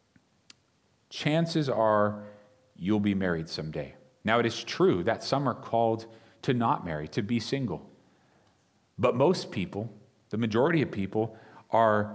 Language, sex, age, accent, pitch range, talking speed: English, male, 40-59, American, 105-135 Hz, 140 wpm